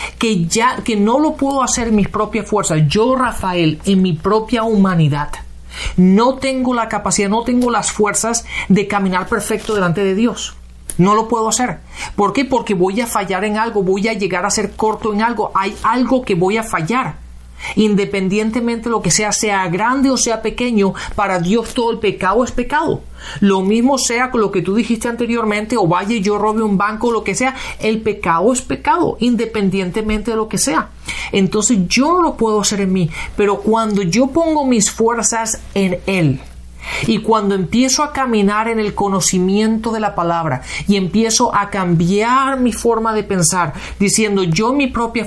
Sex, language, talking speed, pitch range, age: male, Spanish, 190 wpm, 190-235 Hz, 40-59